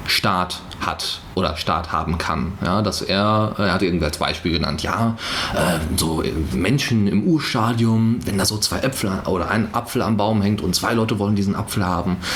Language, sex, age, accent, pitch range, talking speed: German, male, 30-49, German, 80-105 Hz, 190 wpm